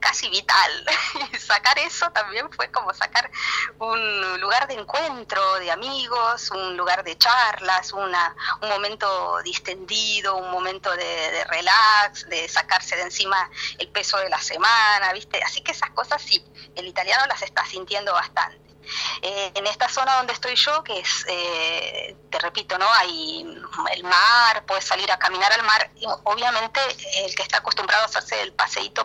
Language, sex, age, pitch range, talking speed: Spanish, female, 30-49, 180-240 Hz, 165 wpm